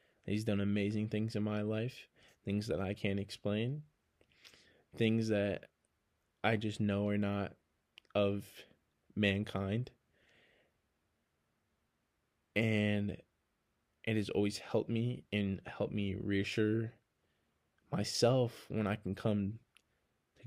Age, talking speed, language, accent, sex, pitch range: 20-39, 110 wpm, English, American, male, 100-115 Hz